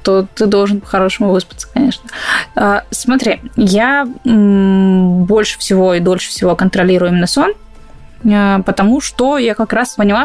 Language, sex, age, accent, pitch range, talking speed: Russian, female, 20-39, native, 195-245 Hz, 130 wpm